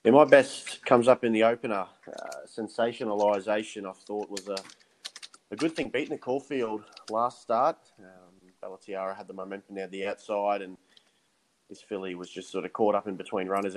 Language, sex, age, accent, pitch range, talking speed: English, male, 20-39, Australian, 95-115 Hz, 190 wpm